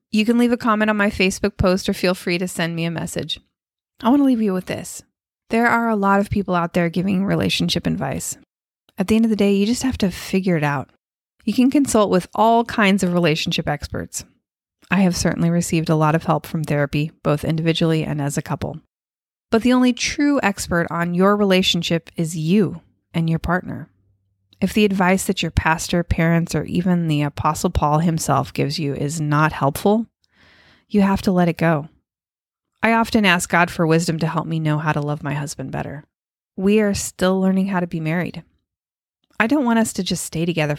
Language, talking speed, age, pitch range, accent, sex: English, 210 wpm, 20-39, 160-205 Hz, American, female